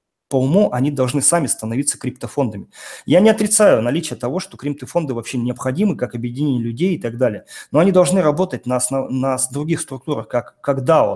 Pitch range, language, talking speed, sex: 120-155 Hz, Russian, 185 wpm, male